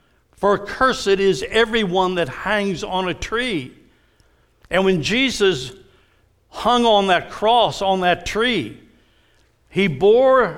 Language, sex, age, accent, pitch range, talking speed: English, male, 60-79, American, 155-230 Hz, 120 wpm